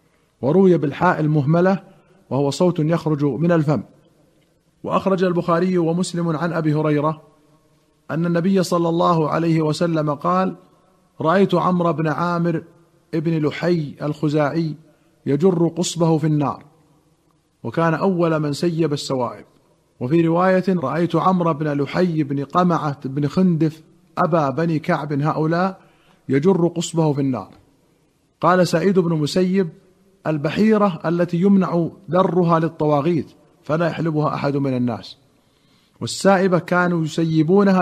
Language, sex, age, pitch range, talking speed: Arabic, male, 50-69, 150-175 Hz, 115 wpm